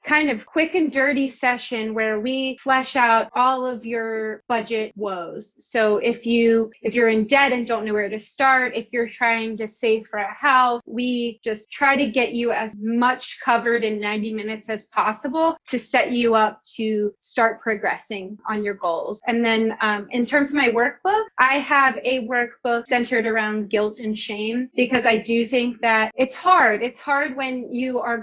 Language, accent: English, American